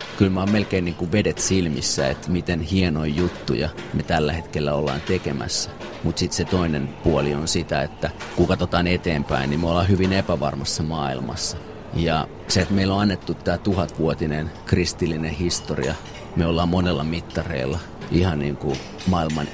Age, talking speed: 30-49, 155 wpm